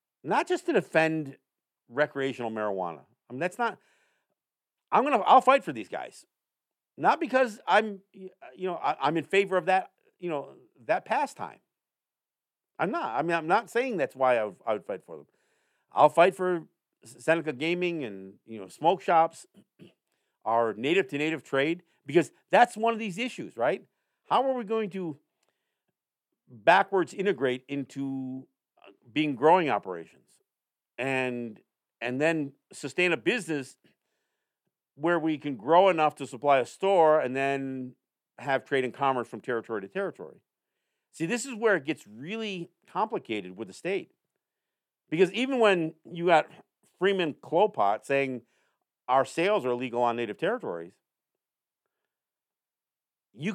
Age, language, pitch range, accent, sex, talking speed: 50-69, English, 130-195 Hz, American, male, 150 wpm